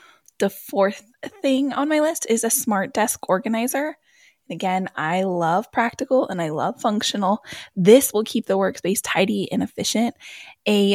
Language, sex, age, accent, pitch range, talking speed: English, female, 10-29, American, 195-250 Hz, 155 wpm